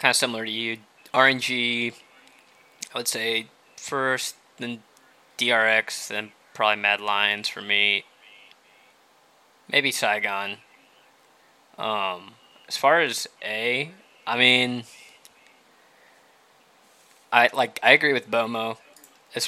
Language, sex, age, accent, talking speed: English, male, 20-39, American, 110 wpm